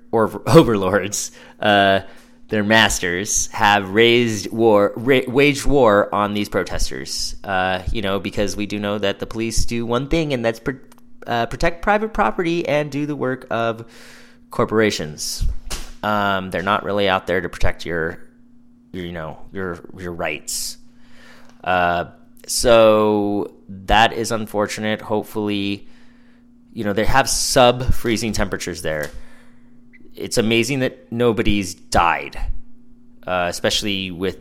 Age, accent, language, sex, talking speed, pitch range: 20-39, American, English, male, 135 wpm, 95-120 Hz